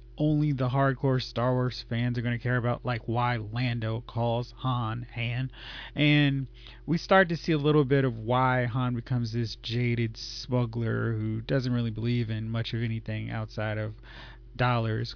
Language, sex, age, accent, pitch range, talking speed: English, male, 30-49, American, 115-130 Hz, 165 wpm